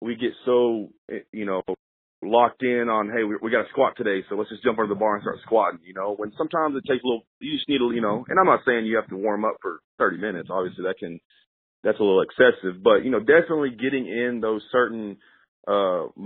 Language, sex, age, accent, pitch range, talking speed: English, male, 30-49, American, 105-125 Hz, 245 wpm